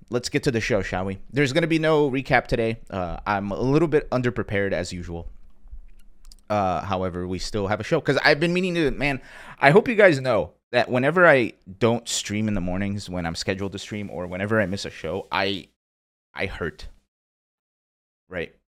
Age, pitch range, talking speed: 30-49, 90-120 Hz, 200 wpm